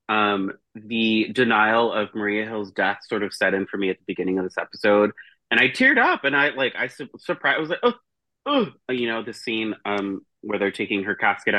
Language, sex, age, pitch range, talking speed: English, male, 30-49, 100-125 Hz, 230 wpm